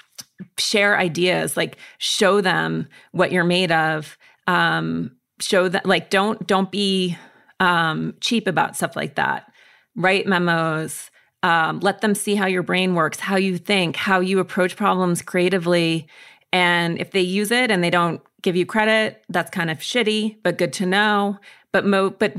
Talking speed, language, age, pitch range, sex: 165 wpm, English, 30-49, 165-200 Hz, female